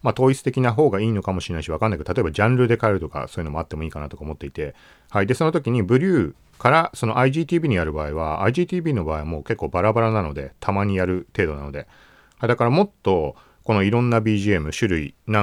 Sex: male